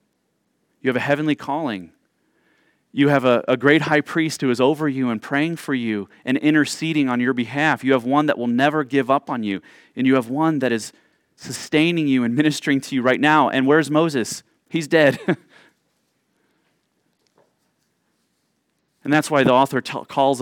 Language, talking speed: English, 175 wpm